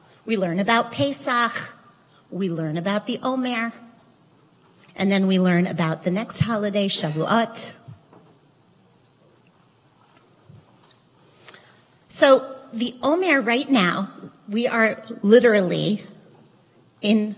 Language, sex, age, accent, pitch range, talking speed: English, female, 40-59, American, 175-230 Hz, 95 wpm